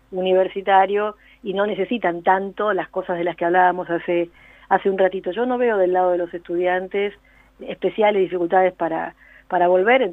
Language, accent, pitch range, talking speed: Spanish, Argentinian, 180-205 Hz, 170 wpm